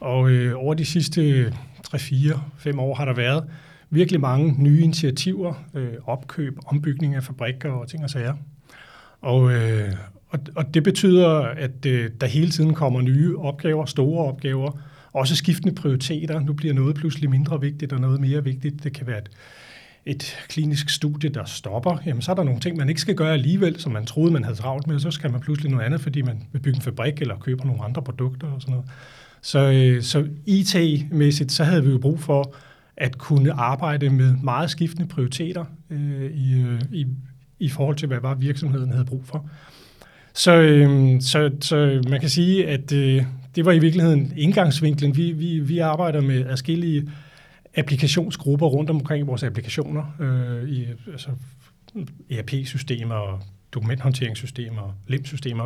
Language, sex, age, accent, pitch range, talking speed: Danish, male, 30-49, native, 130-155 Hz, 175 wpm